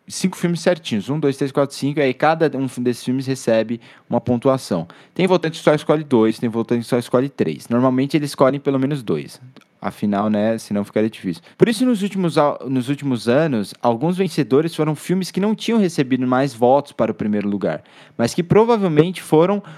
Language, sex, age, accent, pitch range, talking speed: Portuguese, male, 20-39, Brazilian, 120-155 Hz, 195 wpm